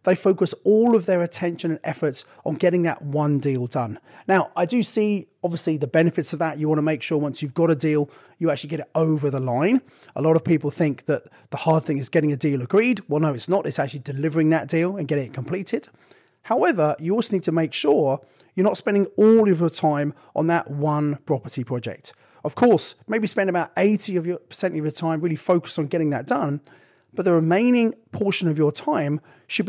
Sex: male